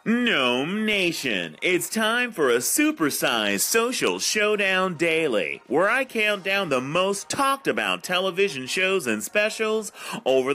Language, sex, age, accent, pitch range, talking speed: English, male, 30-49, American, 130-210 Hz, 130 wpm